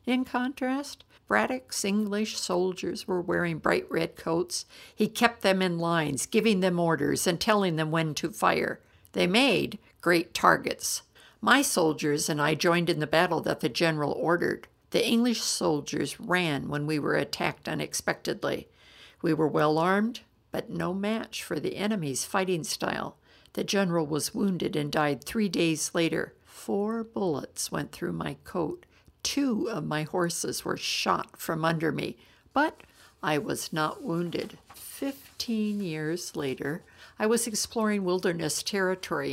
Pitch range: 155-205 Hz